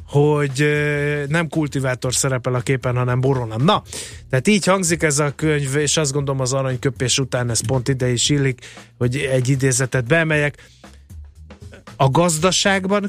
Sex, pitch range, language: male, 125-170 Hz, Hungarian